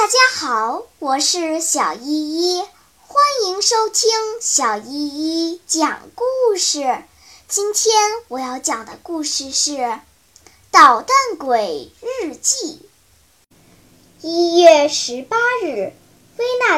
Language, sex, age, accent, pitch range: Chinese, male, 10-29, native, 300-450 Hz